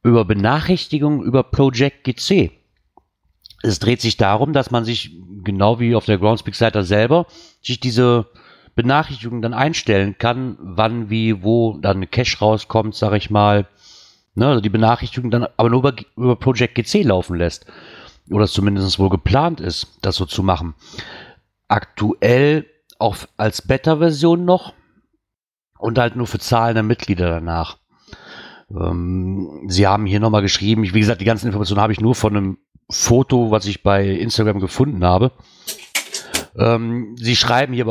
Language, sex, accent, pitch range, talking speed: German, male, German, 105-130 Hz, 155 wpm